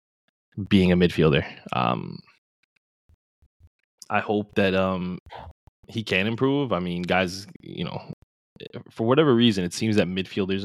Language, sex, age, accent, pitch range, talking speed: English, male, 20-39, American, 90-100 Hz, 130 wpm